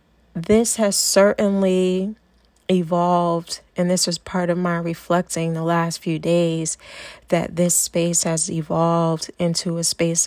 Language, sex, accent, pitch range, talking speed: English, female, American, 165-185 Hz, 135 wpm